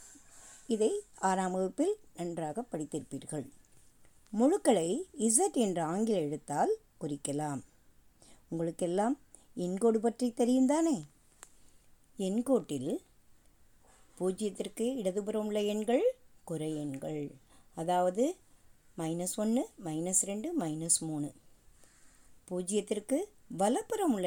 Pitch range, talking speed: 170-245 Hz, 70 wpm